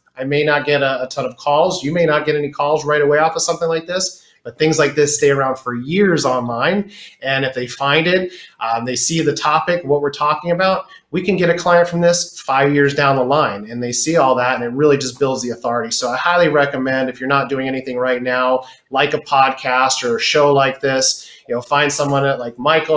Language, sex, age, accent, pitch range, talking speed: English, male, 30-49, American, 130-160 Hz, 245 wpm